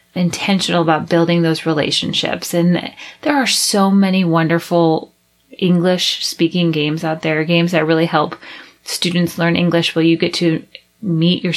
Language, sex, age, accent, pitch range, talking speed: English, female, 30-49, American, 165-195 Hz, 150 wpm